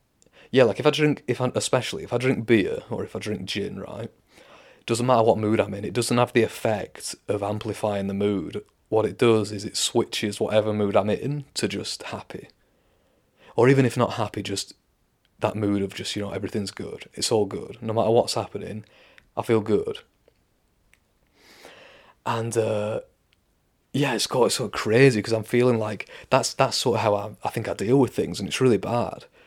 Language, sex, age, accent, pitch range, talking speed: English, male, 30-49, British, 105-120 Hz, 200 wpm